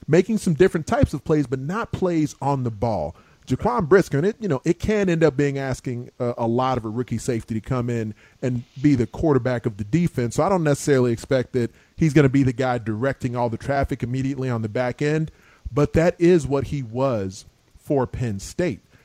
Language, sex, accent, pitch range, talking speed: English, male, American, 120-150 Hz, 215 wpm